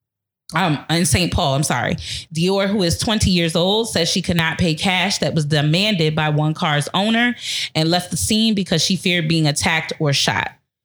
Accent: American